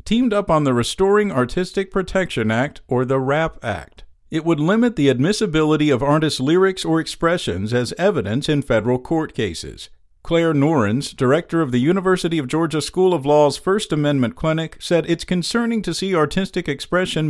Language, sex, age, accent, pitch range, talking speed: English, male, 50-69, American, 135-180 Hz, 170 wpm